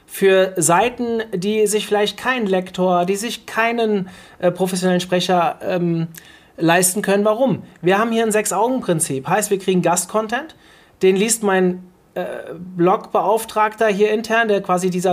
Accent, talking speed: German, 145 wpm